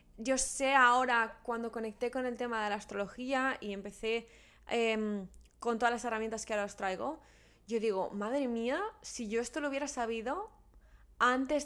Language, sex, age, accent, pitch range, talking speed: Spanish, female, 20-39, Spanish, 215-260 Hz, 170 wpm